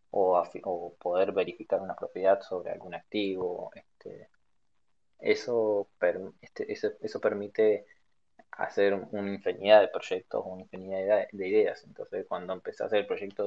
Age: 20-39